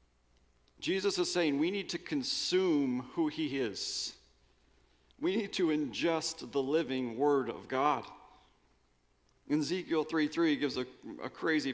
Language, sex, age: English, male, 40-59